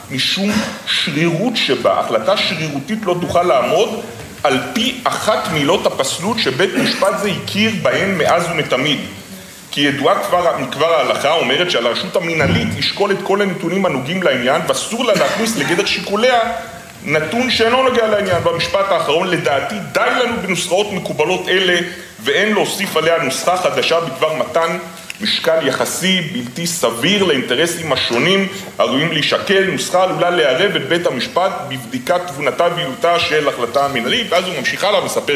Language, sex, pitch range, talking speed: Hebrew, male, 150-200 Hz, 140 wpm